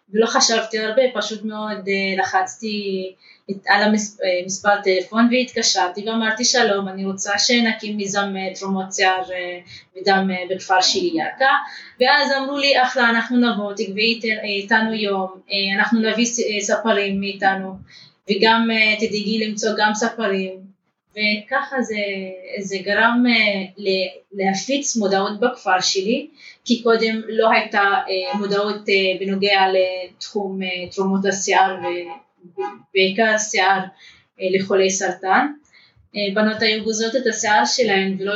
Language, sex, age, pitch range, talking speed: Hebrew, female, 20-39, 195-225 Hz, 105 wpm